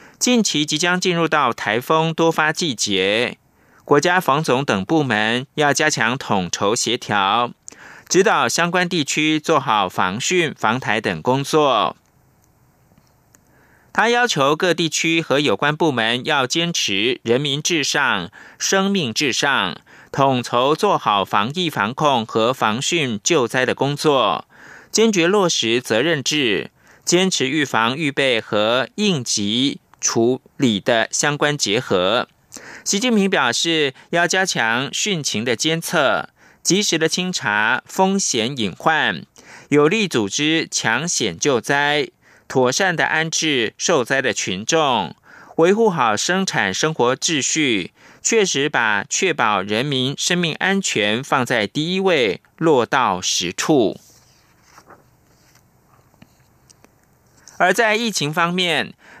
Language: French